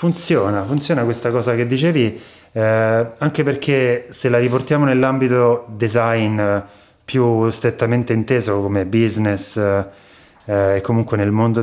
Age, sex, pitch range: 30-49, male, 105-130 Hz